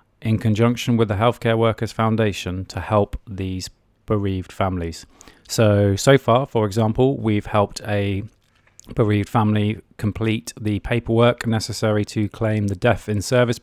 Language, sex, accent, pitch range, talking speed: English, male, British, 100-115 Hz, 140 wpm